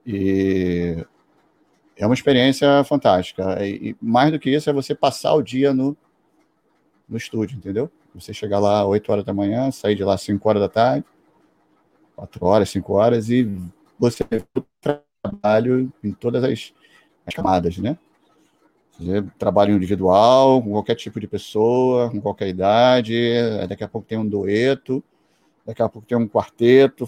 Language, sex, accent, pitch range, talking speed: Portuguese, male, Brazilian, 100-130 Hz, 155 wpm